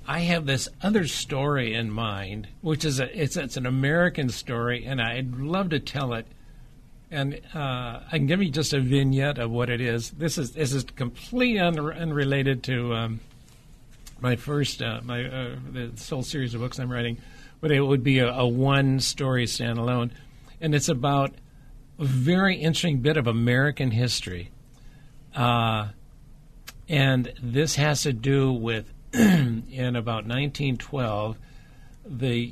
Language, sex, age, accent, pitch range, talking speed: English, male, 60-79, American, 125-150 Hz, 155 wpm